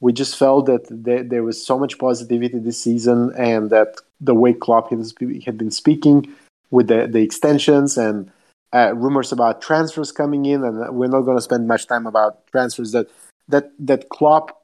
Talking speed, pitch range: 180 wpm, 115-145 Hz